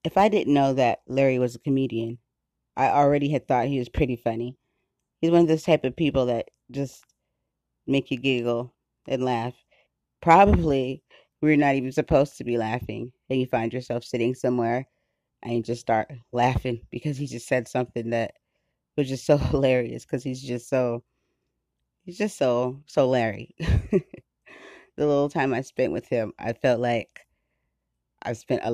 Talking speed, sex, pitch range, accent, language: 170 wpm, female, 120-140 Hz, American, English